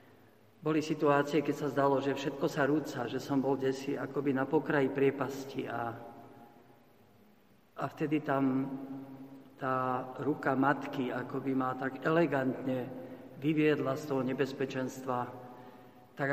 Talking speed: 120 wpm